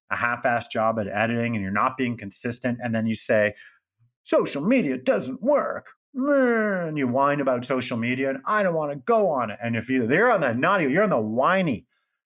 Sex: male